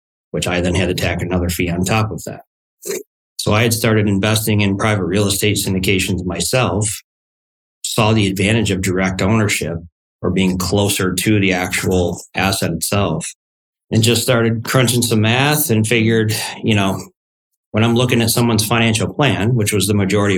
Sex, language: male, English